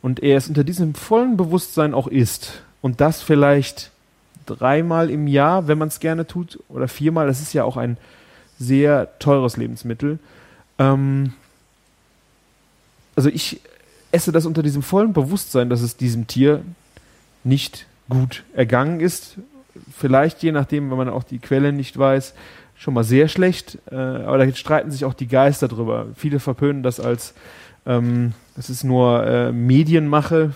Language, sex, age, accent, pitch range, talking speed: German, male, 30-49, German, 125-150 Hz, 155 wpm